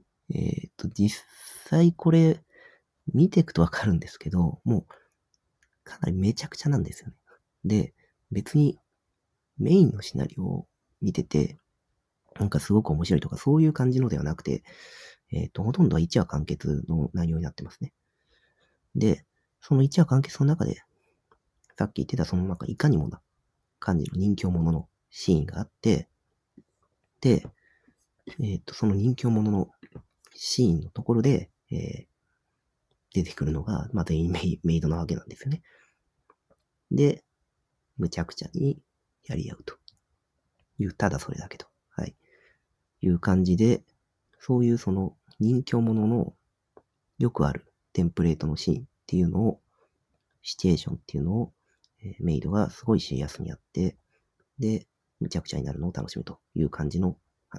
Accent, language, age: native, Japanese, 40-59